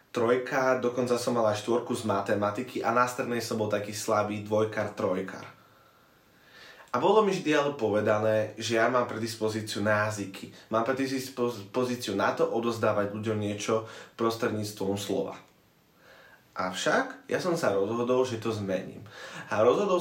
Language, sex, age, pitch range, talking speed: Slovak, male, 20-39, 105-125 Hz, 140 wpm